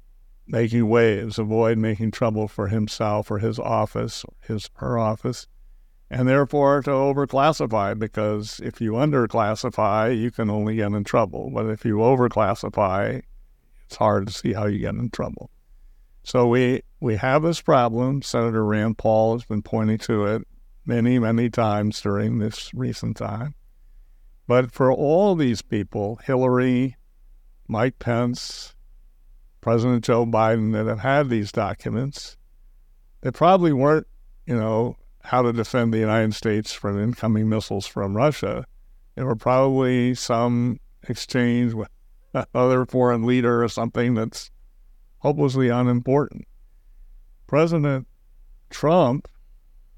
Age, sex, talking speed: 60-79, male, 130 wpm